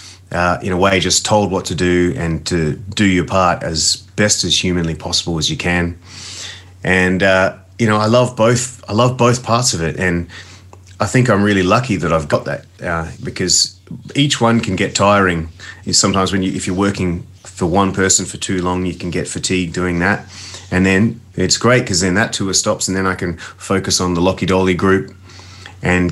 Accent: Australian